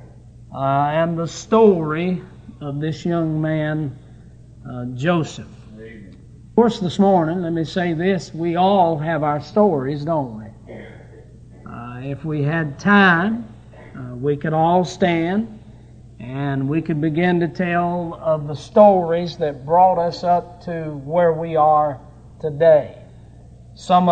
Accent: American